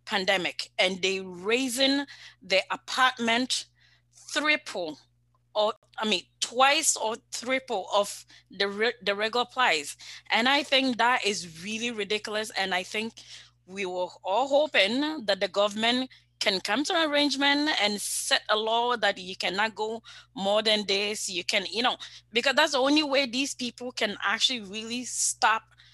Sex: female